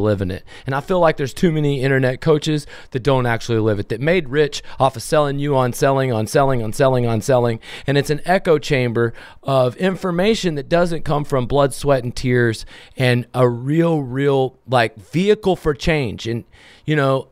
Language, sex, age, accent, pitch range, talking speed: English, male, 30-49, American, 120-150 Hz, 200 wpm